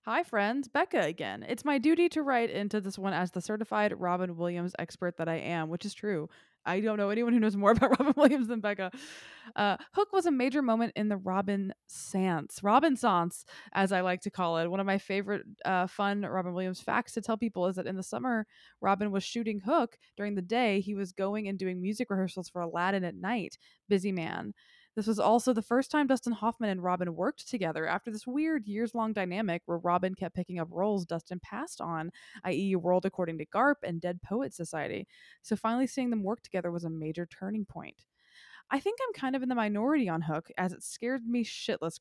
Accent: American